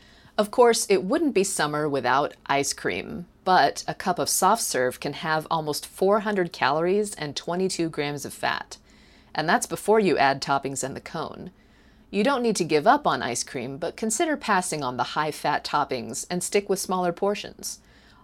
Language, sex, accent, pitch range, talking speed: English, female, American, 145-200 Hz, 180 wpm